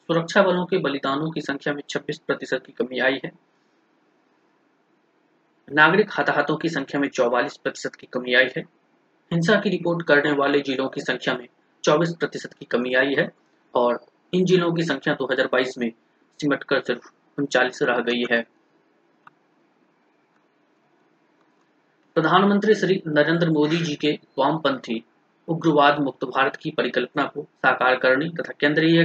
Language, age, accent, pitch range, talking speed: Hindi, 30-49, native, 135-170 Hz, 150 wpm